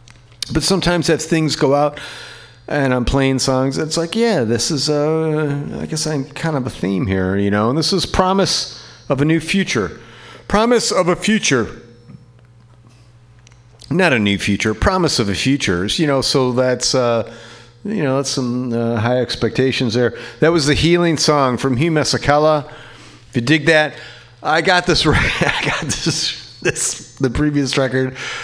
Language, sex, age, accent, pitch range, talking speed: English, male, 40-59, American, 115-150 Hz, 175 wpm